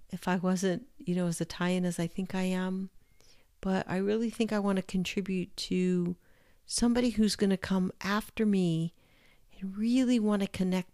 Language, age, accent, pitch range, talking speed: English, 50-69, American, 165-205 Hz, 185 wpm